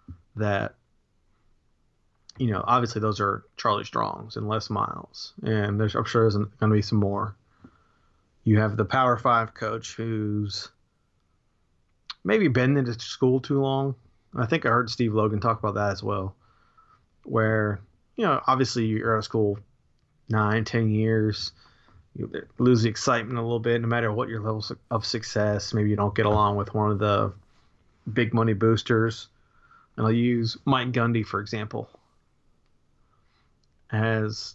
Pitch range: 105-120 Hz